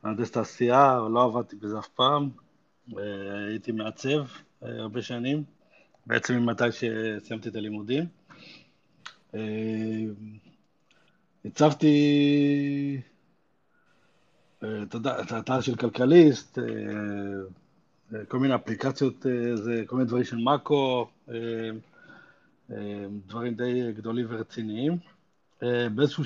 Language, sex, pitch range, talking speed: Hebrew, male, 110-145 Hz, 100 wpm